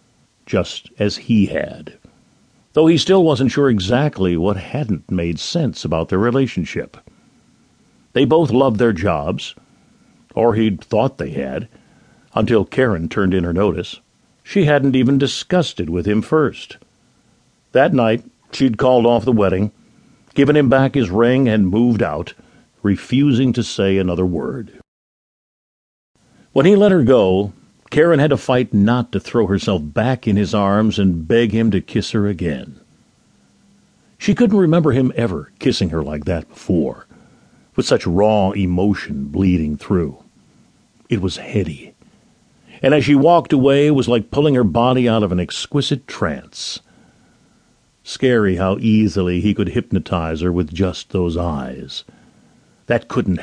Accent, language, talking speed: American, English, 150 wpm